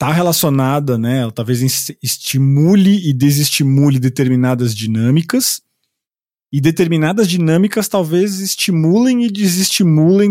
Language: Portuguese